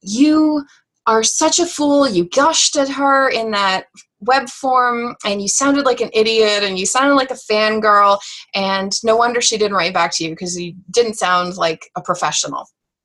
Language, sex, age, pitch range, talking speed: English, female, 20-39, 180-255 Hz, 190 wpm